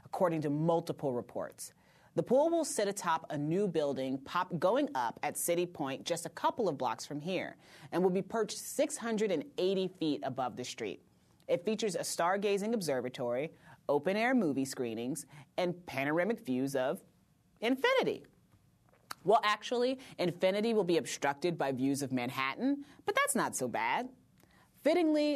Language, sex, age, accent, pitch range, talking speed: English, female, 30-49, American, 135-220 Hz, 150 wpm